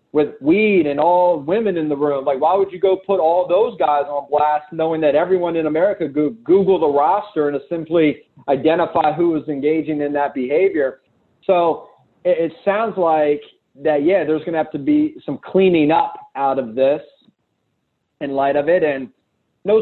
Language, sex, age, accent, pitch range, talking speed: English, male, 30-49, American, 150-190 Hz, 180 wpm